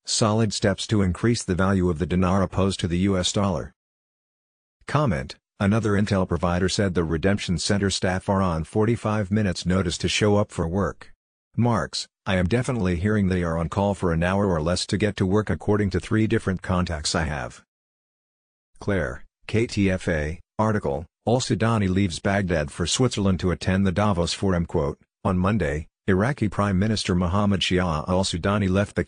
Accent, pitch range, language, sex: American, 90-105 Hz, English, male